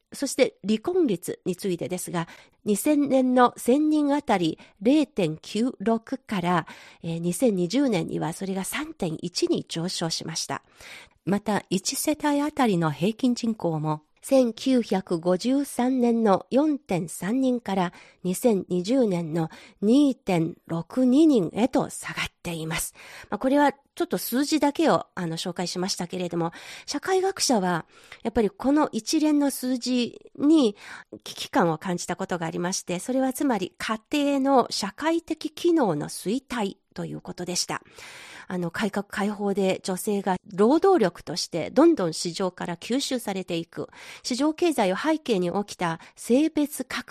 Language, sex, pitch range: Japanese, female, 180-270 Hz